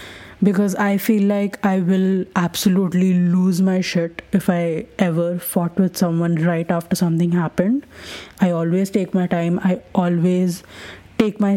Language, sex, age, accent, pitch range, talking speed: English, female, 20-39, Indian, 180-210 Hz, 150 wpm